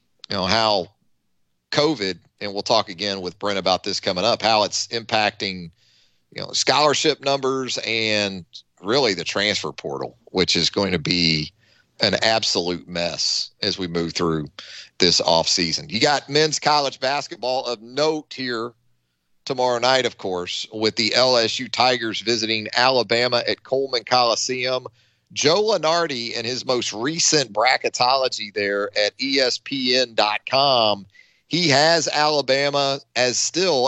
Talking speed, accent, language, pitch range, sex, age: 135 wpm, American, English, 100-135 Hz, male, 40-59